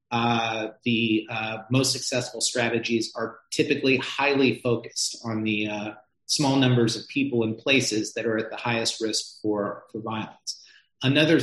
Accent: American